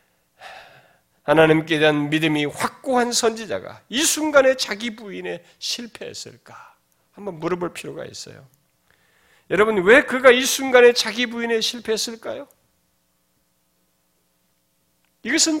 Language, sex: Korean, male